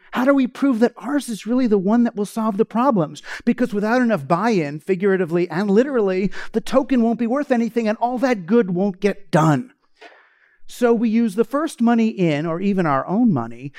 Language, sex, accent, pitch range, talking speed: English, male, American, 185-245 Hz, 205 wpm